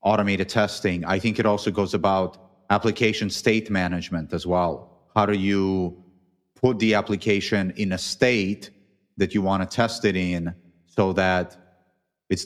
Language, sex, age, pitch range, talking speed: English, male, 30-49, 90-100 Hz, 155 wpm